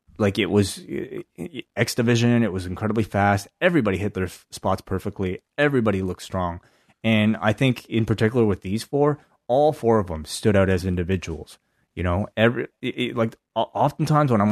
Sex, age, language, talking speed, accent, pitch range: male, 30-49, English, 165 wpm, American, 95-120 Hz